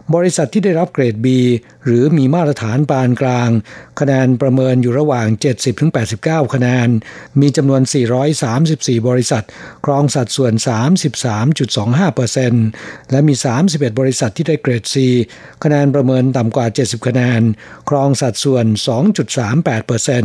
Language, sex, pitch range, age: Thai, male, 120-145 Hz, 60-79